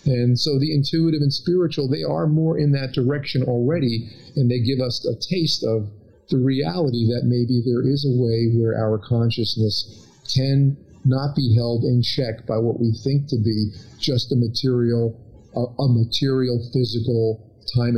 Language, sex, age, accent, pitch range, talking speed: English, male, 50-69, American, 110-130 Hz, 170 wpm